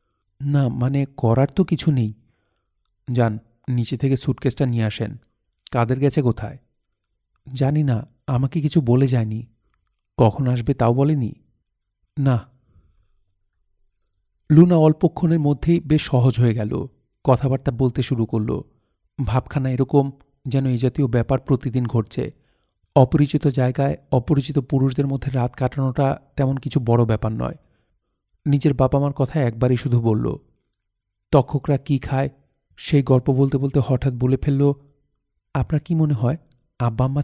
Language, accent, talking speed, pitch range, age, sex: Bengali, native, 120 wpm, 115-140 Hz, 40-59, male